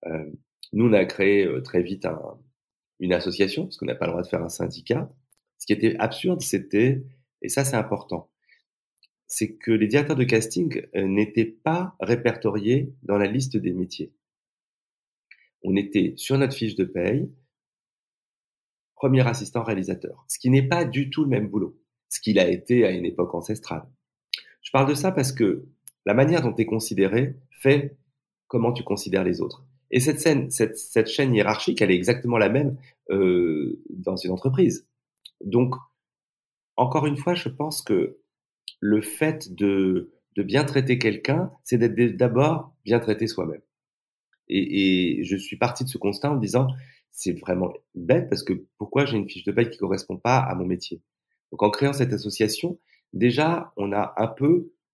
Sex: male